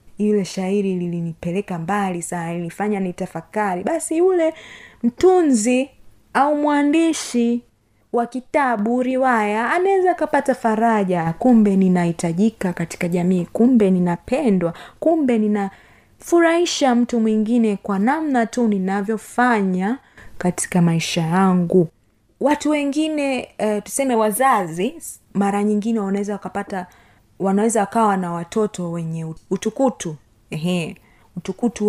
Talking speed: 100 wpm